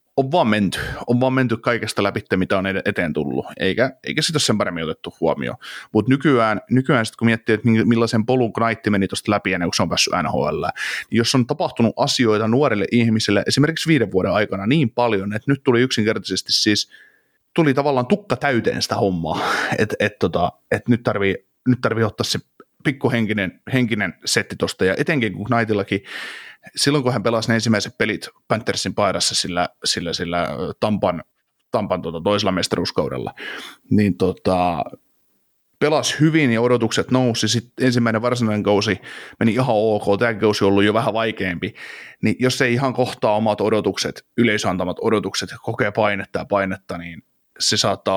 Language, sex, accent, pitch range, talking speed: Finnish, male, native, 100-125 Hz, 170 wpm